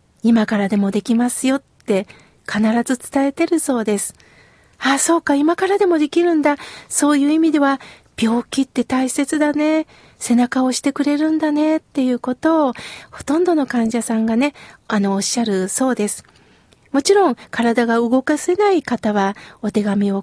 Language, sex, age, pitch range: Japanese, female, 40-59, 230-300 Hz